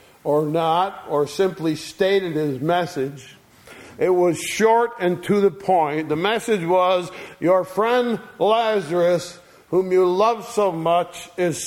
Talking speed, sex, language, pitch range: 135 wpm, male, English, 140-200 Hz